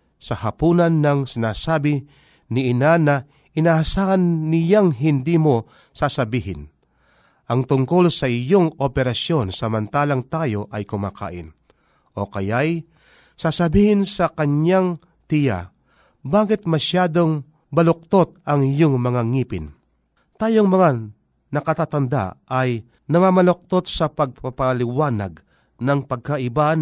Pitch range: 125-170 Hz